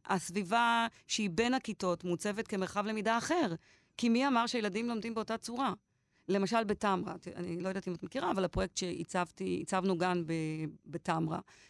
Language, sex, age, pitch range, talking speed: Hebrew, female, 30-49, 175-230 Hz, 150 wpm